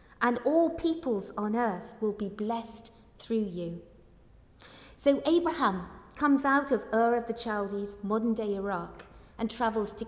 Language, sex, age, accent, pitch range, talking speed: English, female, 50-69, British, 195-235 Hz, 150 wpm